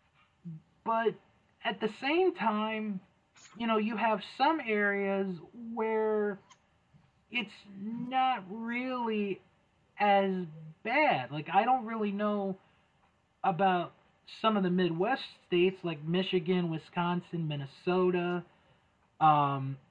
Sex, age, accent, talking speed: male, 30-49, American, 100 wpm